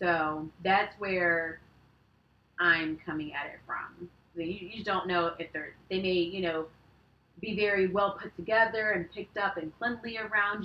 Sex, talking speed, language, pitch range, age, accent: female, 165 wpm, English, 170-215 Hz, 30-49, American